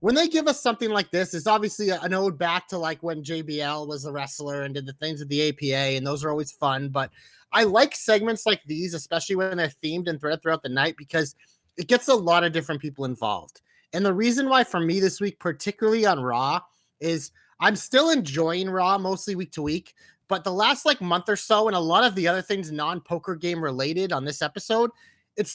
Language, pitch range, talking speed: English, 155-205 Hz, 225 wpm